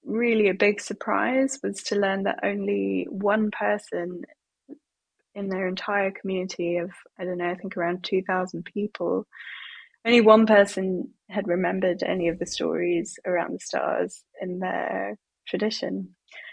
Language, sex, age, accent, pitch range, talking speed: English, female, 20-39, British, 190-215 Hz, 140 wpm